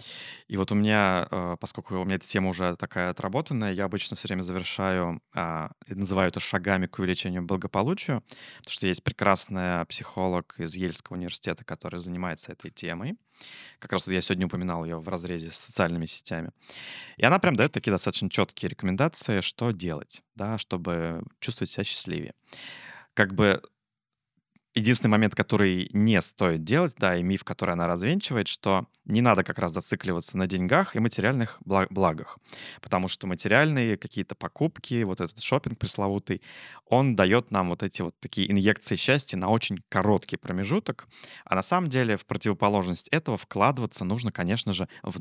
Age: 20-39